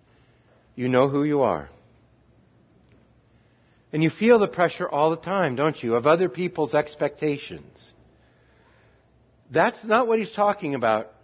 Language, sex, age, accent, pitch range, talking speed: English, male, 60-79, American, 150-210 Hz, 135 wpm